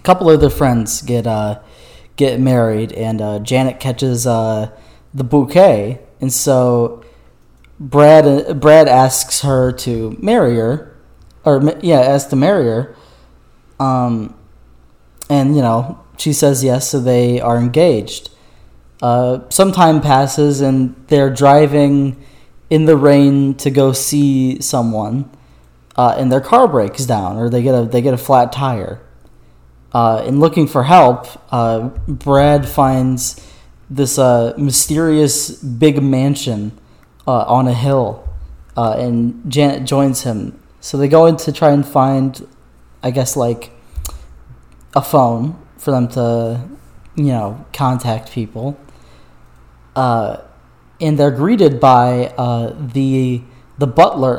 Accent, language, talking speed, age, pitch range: American, English, 135 wpm, 20-39, 115-140 Hz